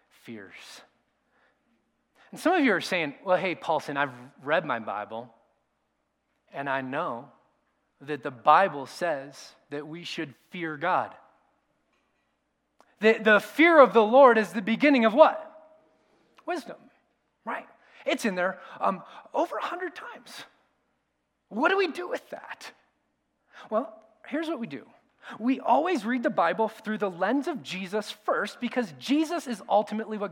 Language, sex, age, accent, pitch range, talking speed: English, male, 30-49, American, 190-275 Hz, 145 wpm